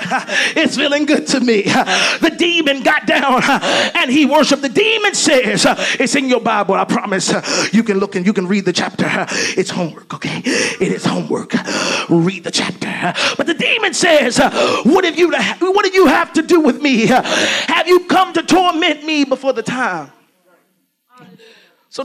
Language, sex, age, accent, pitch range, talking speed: English, male, 40-59, American, 250-340 Hz, 175 wpm